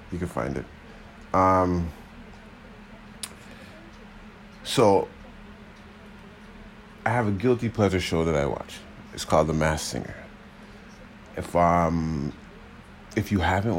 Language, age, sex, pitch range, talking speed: English, 30-49, male, 80-95 Hz, 110 wpm